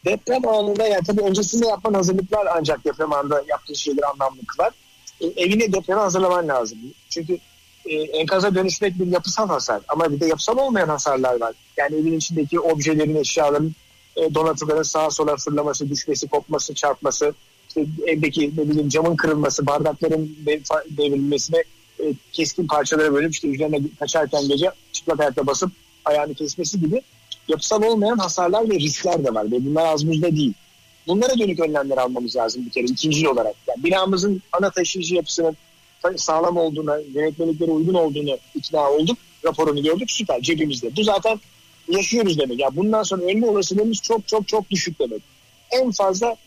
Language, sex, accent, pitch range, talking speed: Turkish, male, native, 145-185 Hz, 160 wpm